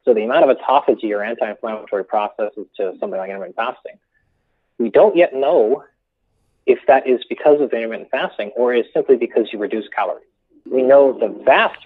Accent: American